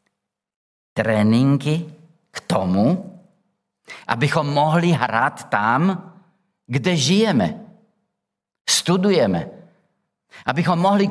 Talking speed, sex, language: 65 wpm, male, Czech